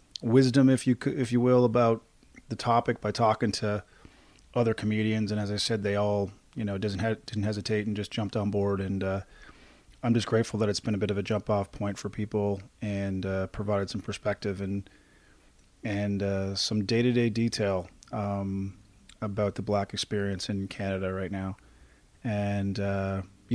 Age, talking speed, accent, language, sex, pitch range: 30-49, 185 wpm, American, English, male, 100-120 Hz